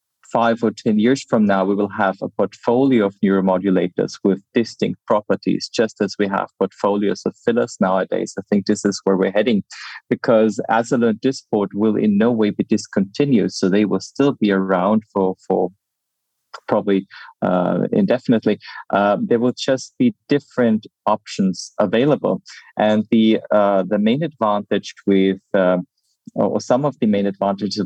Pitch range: 100-115 Hz